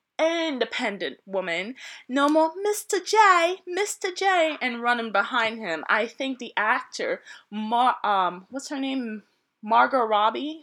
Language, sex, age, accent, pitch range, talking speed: English, female, 20-39, American, 185-275 Hz, 130 wpm